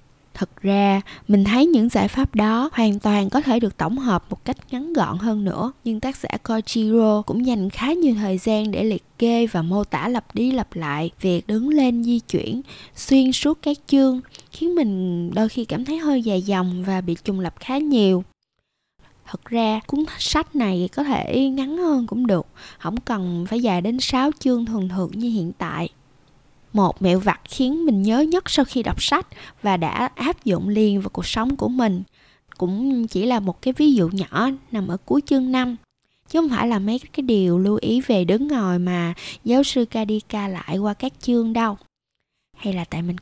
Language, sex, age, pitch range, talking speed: Vietnamese, female, 20-39, 190-255 Hz, 205 wpm